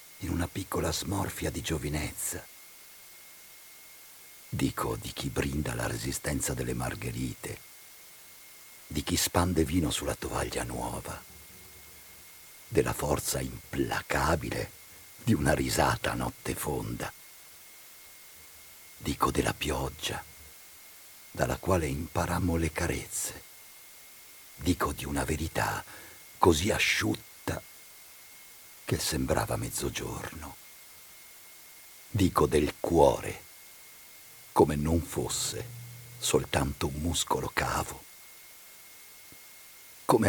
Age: 50-69